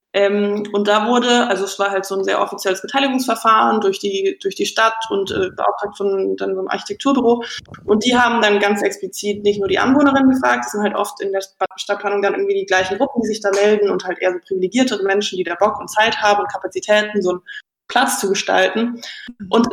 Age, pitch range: 20-39, 195-225 Hz